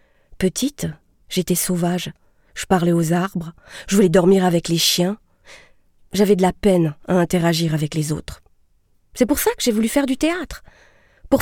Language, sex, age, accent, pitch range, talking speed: French, female, 40-59, French, 175-240 Hz, 170 wpm